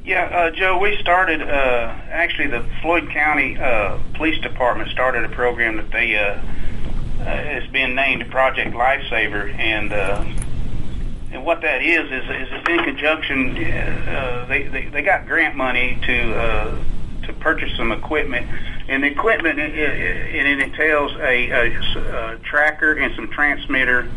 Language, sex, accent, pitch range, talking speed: English, male, American, 115-145 Hz, 155 wpm